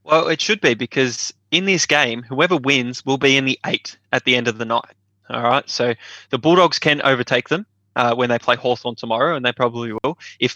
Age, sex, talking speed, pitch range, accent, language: 20-39, male, 225 wpm, 115-140 Hz, Australian, English